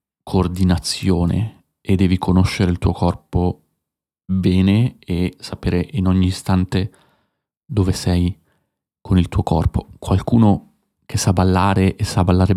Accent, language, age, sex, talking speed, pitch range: native, Italian, 30-49, male, 125 wpm, 90-105 Hz